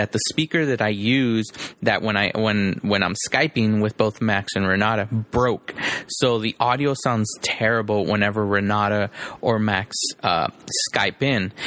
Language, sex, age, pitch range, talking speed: English, male, 20-39, 105-120 Hz, 160 wpm